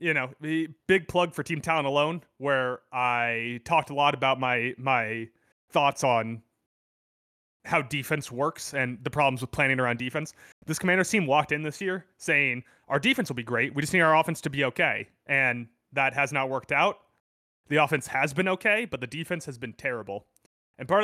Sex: male